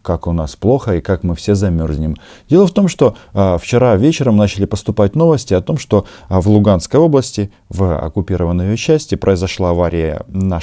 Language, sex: Russian, male